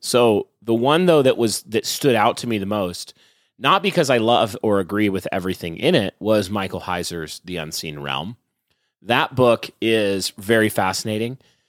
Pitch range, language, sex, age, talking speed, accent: 95-125 Hz, English, male, 30-49, 175 wpm, American